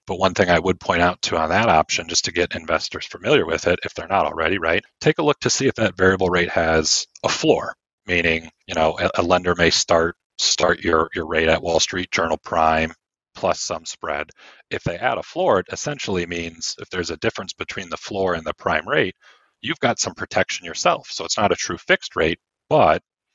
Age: 40-59